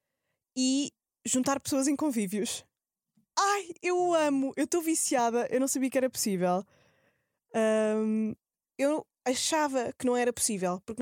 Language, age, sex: Portuguese, 20-39, female